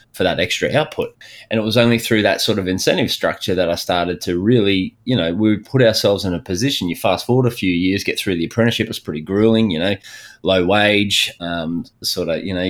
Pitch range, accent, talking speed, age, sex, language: 90-110 Hz, Australian, 230 wpm, 20-39, male, English